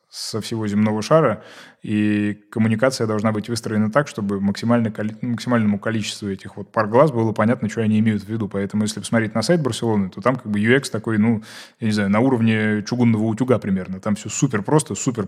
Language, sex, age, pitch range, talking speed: Russian, male, 20-39, 105-120 Hz, 200 wpm